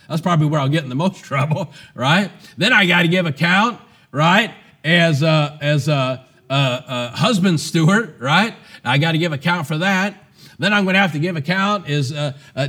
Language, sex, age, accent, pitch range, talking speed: English, male, 40-59, American, 135-175 Hz, 200 wpm